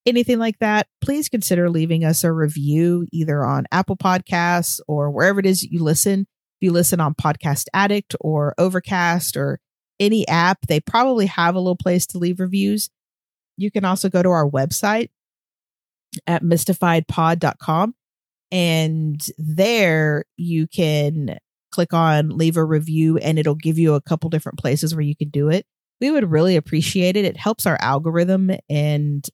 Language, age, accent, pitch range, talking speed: English, 40-59, American, 150-185 Hz, 165 wpm